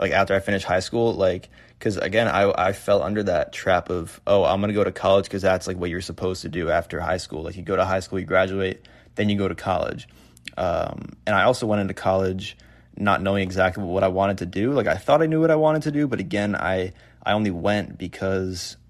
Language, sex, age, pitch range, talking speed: English, male, 20-39, 95-105 Hz, 250 wpm